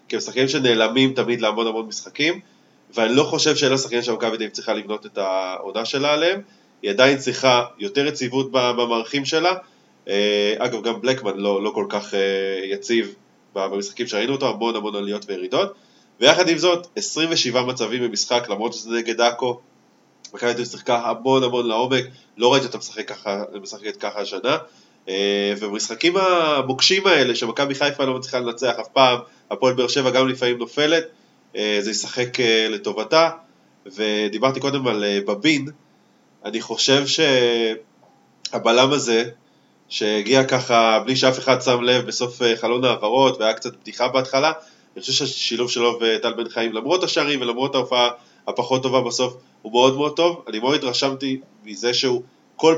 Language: Hebrew